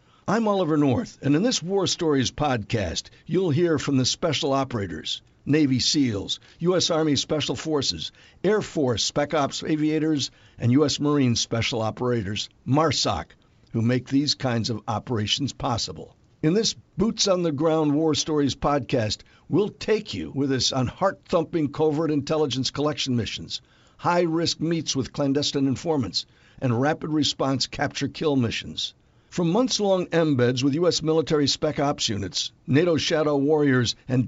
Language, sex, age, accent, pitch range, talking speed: English, male, 60-79, American, 125-160 Hz, 140 wpm